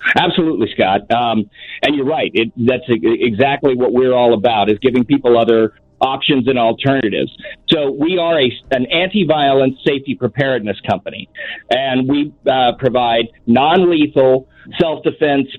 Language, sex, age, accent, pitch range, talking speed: English, male, 50-69, American, 130-160 Hz, 125 wpm